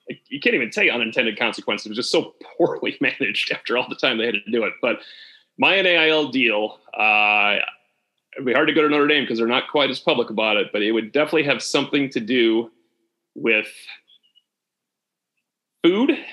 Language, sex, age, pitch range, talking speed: English, male, 30-49, 120-145 Hz, 195 wpm